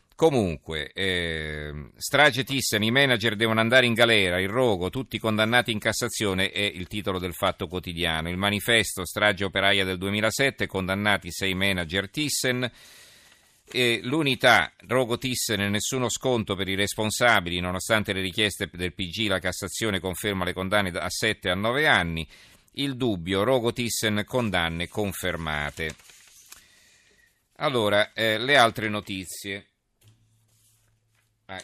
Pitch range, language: 90-110 Hz, Italian